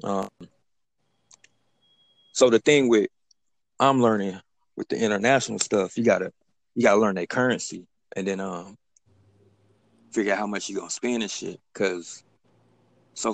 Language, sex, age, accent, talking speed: English, male, 20-39, American, 145 wpm